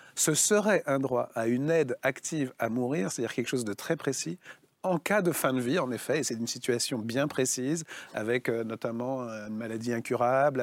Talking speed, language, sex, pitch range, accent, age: 200 wpm, French, male, 125-160 Hz, French, 40-59